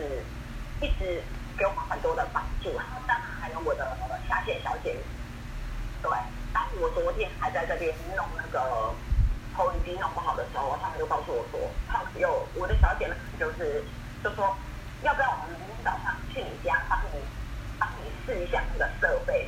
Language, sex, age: Chinese, female, 30-49